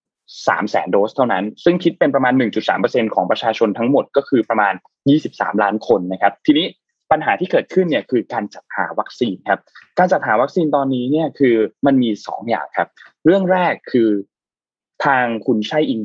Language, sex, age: Thai, male, 20-39